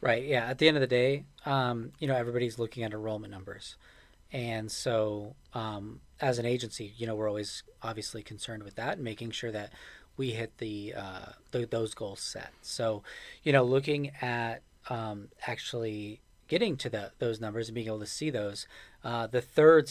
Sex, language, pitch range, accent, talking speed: male, English, 110-130 Hz, American, 190 wpm